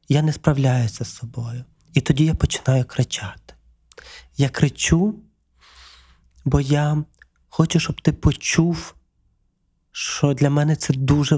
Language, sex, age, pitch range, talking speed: Ukrainian, male, 30-49, 130-160 Hz, 120 wpm